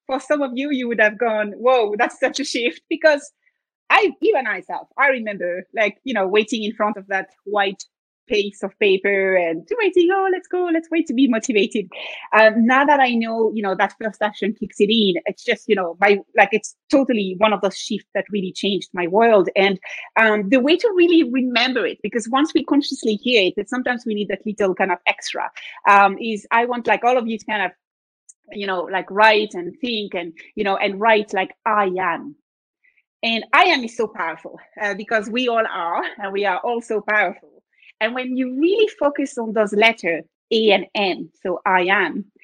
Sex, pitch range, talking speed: female, 200-260 Hz, 210 wpm